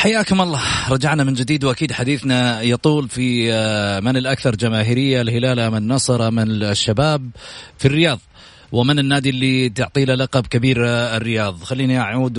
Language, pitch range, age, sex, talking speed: Arabic, 110-150 Hz, 30-49, male, 135 wpm